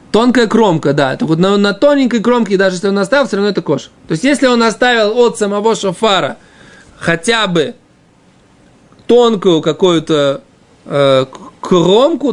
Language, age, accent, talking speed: Russian, 20-39, native, 145 wpm